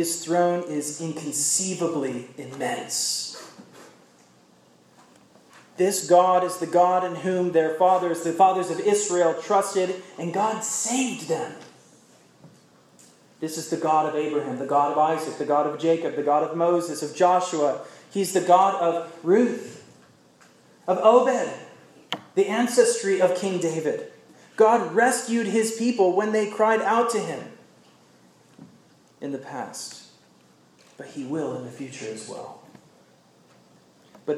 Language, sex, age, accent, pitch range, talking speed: English, male, 30-49, American, 155-195 Hz, 135 wpm